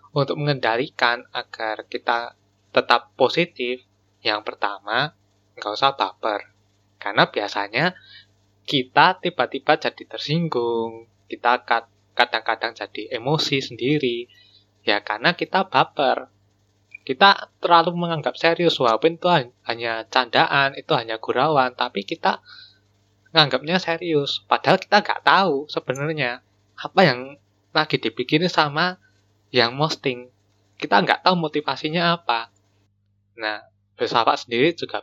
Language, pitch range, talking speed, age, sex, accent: Indonesian, 105-150 Hz, 105 wpm, 20-39, male, native